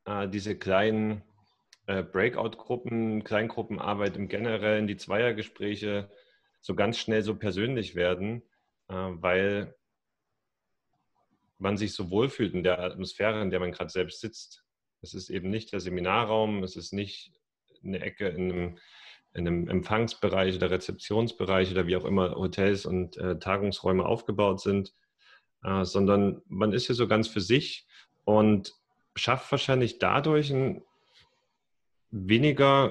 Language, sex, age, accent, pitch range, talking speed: German, male, 30-49, German, 95-110 Hz, 120 wpm